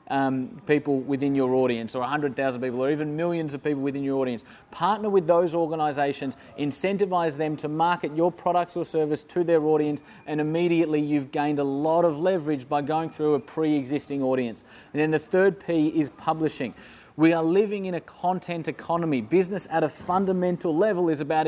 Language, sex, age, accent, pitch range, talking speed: English, male, 20-39, Australian, 145-175 Hz, 185 wpm